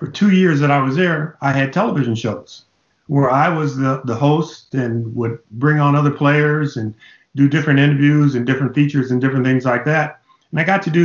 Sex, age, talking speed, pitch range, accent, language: male, 50-69, 215 wpm, 130-155 Hz, American, English